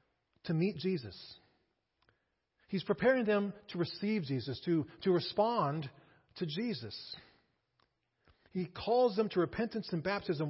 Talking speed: 120 wpm